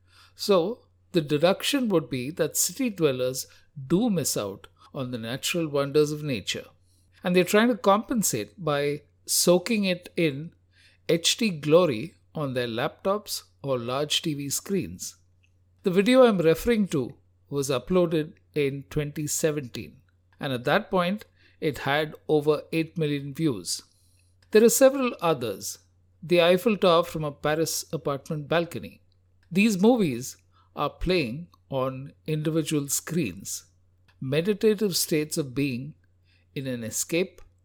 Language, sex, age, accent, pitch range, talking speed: English, male, 60-79, Indian, 115-175 Hz, 130 wpm